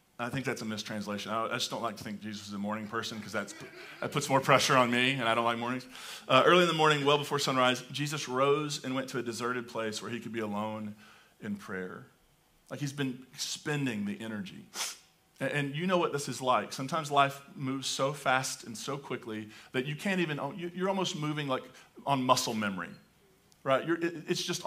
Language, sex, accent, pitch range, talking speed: English, male, American, 125-150 Hz, 210 wpm